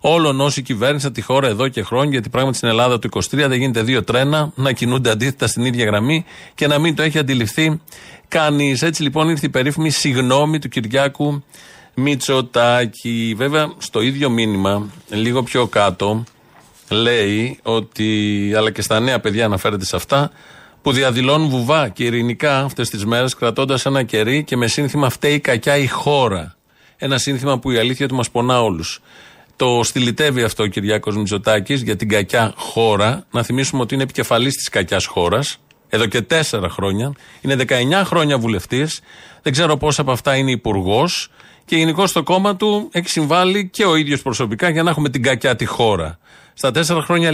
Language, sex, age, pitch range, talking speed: Greek, male, 40-59, 115-145 Hz, 175 wpm